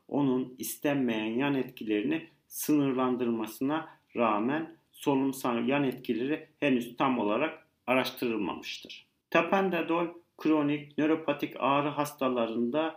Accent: native